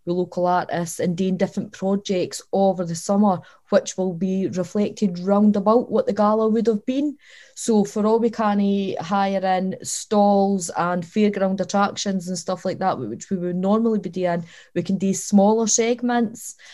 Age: 20-39